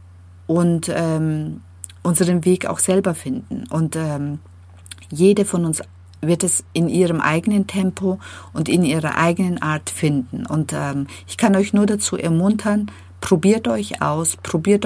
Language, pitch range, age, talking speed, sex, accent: German, 135-190 Hz, 50-69, 145 wpm, female, German